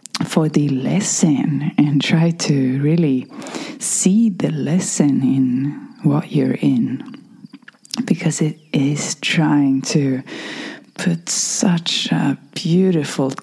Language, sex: English, female